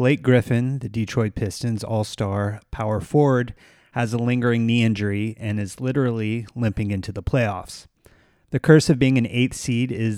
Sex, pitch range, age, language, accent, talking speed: male, 105-125 Hz, 30-49, English, American, 165 wpm